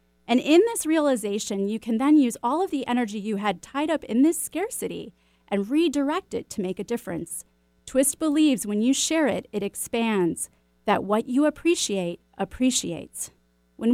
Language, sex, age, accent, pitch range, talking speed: English, female, 30-49, American, 195-270 Hz, 170 wpm